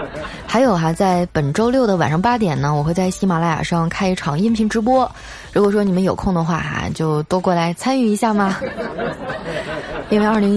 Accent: native